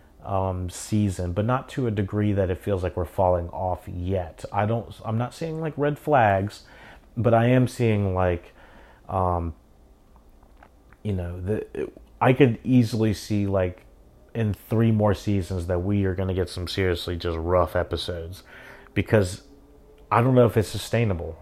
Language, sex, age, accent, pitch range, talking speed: English, male, 30-49, American, 90-105 Hz, 165 wpm